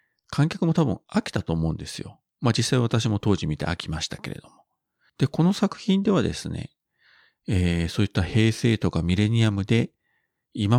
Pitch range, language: 95-135 Hz, Japanese